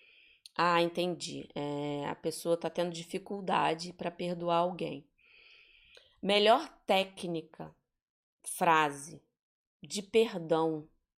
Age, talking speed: 20-39, 80 wpm